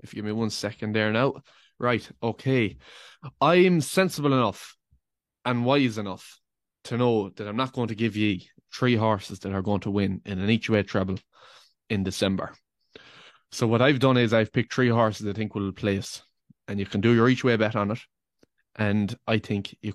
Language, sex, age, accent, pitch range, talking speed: English, male, 20-39, Irish, 100-115 Hz, 200 wpm